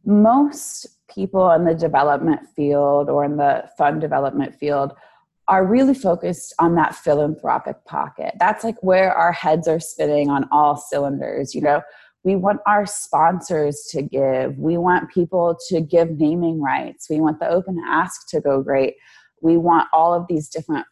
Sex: female